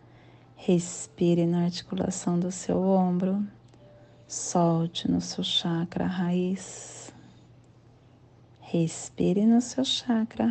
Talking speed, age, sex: 85 wpm, 40-59, female